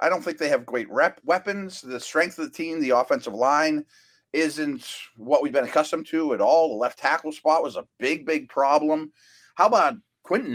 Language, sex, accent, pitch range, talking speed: English, male, American, 120-180 Hz, 205 wpm